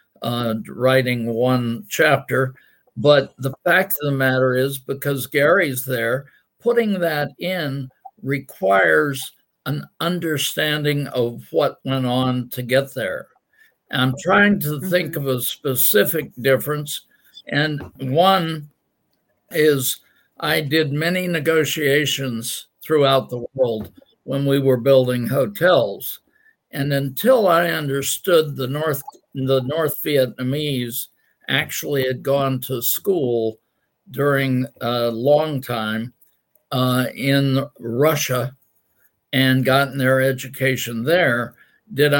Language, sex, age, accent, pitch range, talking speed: English, male, 60-79, American, 130-150 Hz, 110 wpm